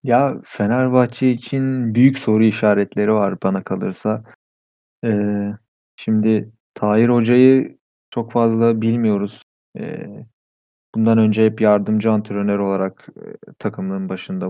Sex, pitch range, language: male, 105-120 Hz, Turkish